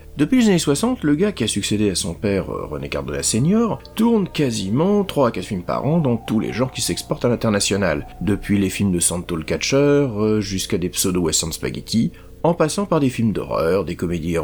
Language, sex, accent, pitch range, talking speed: French, male, French, 100-165 Hz, 210 wpm